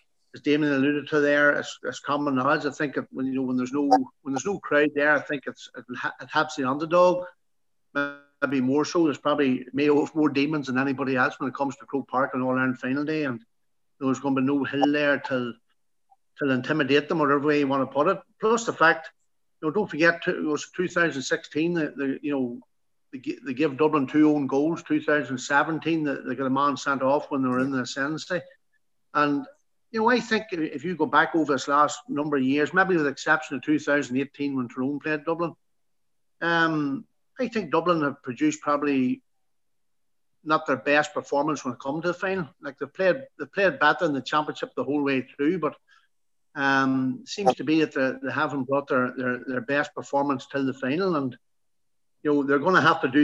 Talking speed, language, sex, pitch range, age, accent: 215 wpm, English, male, 135-155 Hz, 60-79, Irish